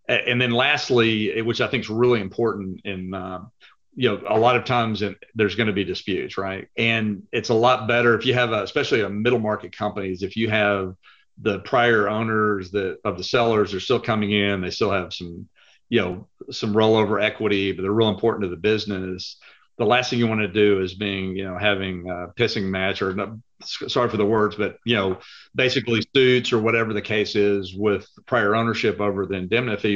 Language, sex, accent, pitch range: English, male, American, 95-115 Hz